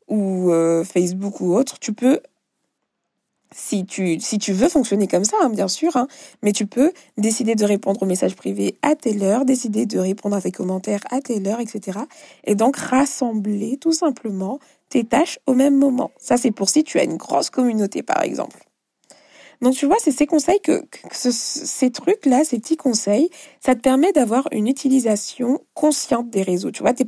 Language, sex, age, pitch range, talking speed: French, female, 20-39, 195-280 Hz, 195 wpm